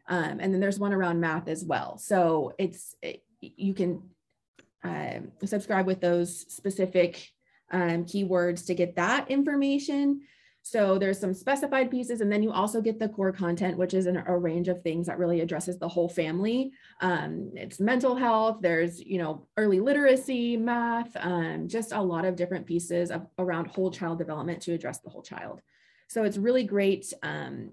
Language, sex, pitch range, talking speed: English, female, 175-215 Hz, 180 wpm